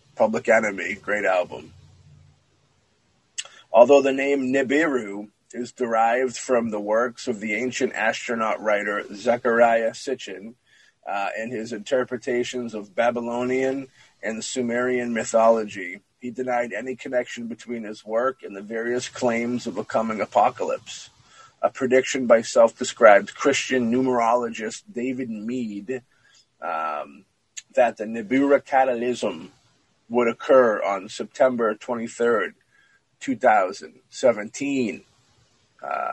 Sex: male